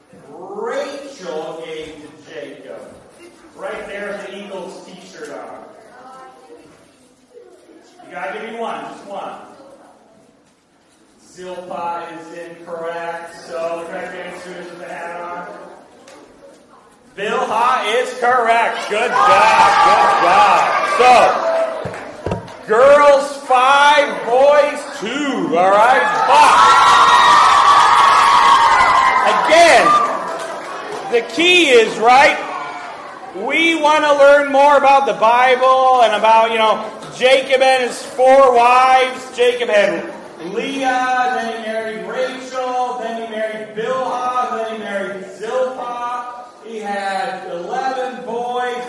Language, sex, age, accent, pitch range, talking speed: English, male, 40-59, American, 205-270 Hz, 105 wpm